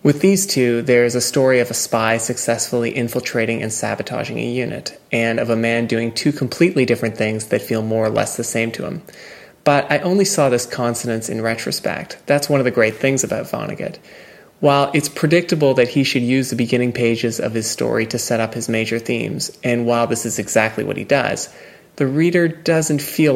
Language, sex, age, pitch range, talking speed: English, male, 20-39, 115-140 Hz, 205 wpm